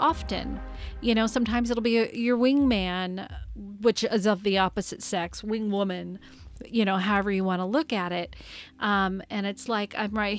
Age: 40-59